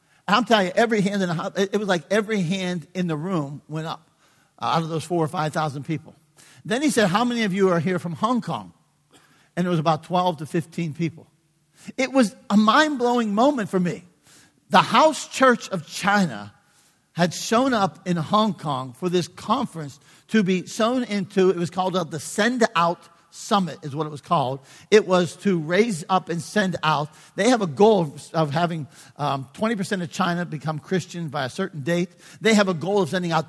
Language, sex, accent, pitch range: English, male, American, 160-210 Hz